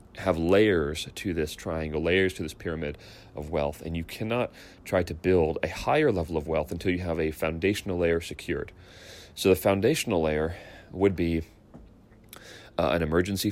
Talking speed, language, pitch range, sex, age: 170 wpm, English, 80-90 Hz, male, 30-49